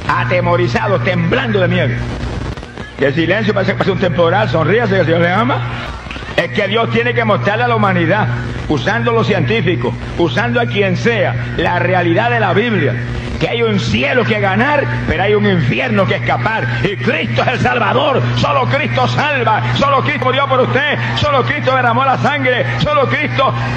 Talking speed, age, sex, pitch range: 180 wpm, 60-79, male, 120-195 Hz